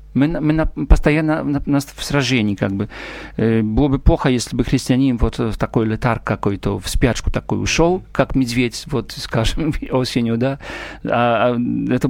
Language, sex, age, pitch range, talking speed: Russian, male, 50-69, 115-135 Hz, 160 wpm